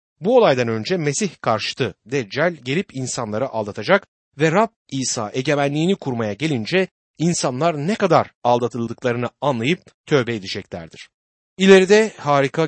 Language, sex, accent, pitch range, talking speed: Turkish, male, native, 120-175 Hz, 115 wpm